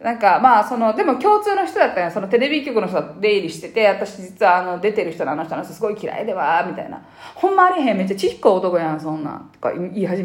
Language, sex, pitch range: Japanese, female, 195-310 Hz